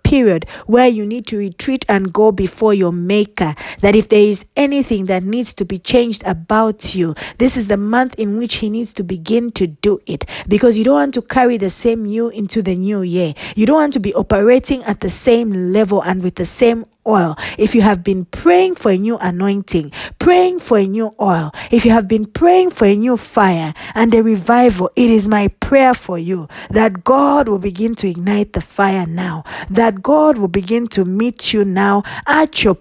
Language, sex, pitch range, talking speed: English, female, 185-235 Hz, 210 wpm